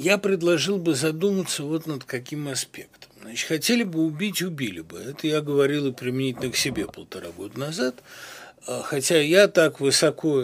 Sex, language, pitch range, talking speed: male, Russian, 140-205 Hz, 165 wpm